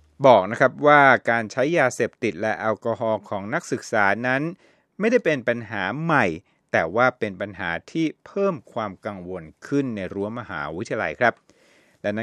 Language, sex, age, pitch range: Thai, male, 60-79, 100-140 Hz